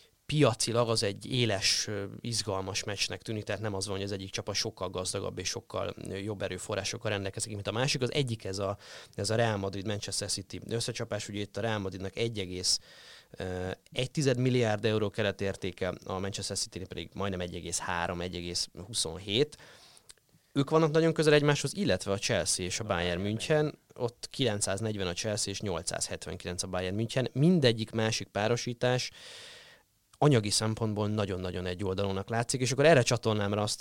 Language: Hungarian